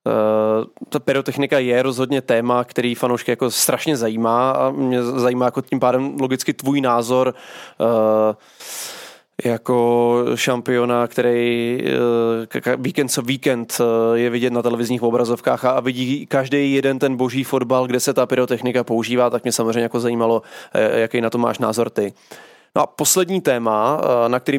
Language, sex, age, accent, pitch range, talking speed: Czech, male, 20-39, native, 120-140 Hz, 150 wpm